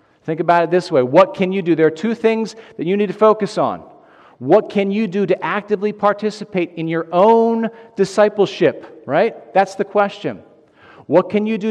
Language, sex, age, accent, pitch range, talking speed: English, male, 40-59, American, 145-200 Hz, 195 wpm